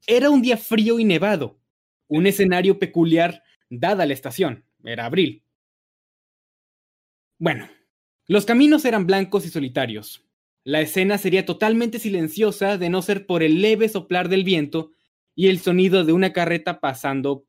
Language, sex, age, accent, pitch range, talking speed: Spanish, male, 20-39, Mexican, 155-205 Hz, 145 wpm